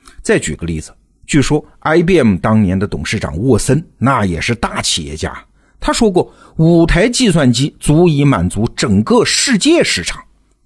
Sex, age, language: male, 50-69, Chinese